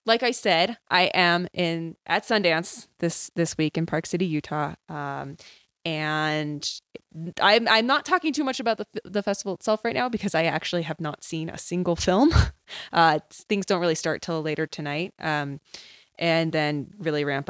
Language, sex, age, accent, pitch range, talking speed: English, female, 20-39, American, 155-185 Hz, 180 wpm